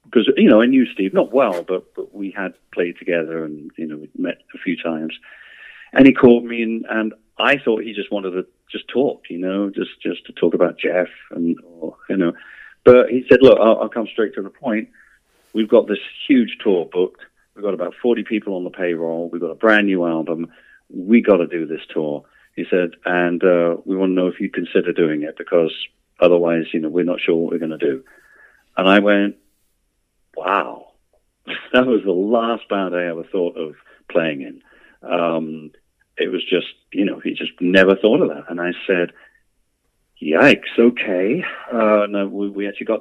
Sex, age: male, 40-59